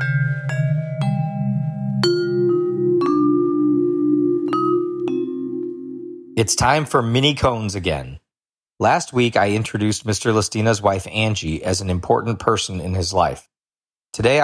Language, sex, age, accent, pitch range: English, male, 40-59, American, 95-130 Hz